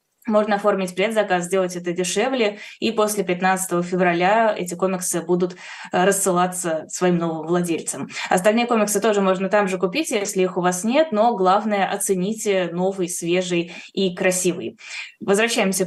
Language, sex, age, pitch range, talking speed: Russian, female, 20-39, 180-210 Hz, 145 wpm